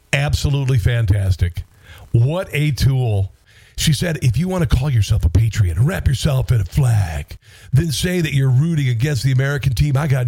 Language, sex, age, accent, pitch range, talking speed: English, male, 50-69, American, 105-140 Hz, 180 wpm